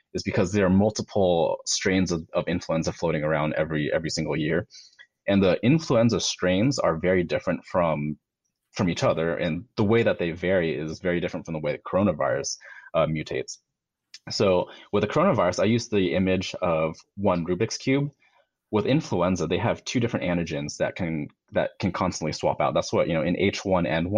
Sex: male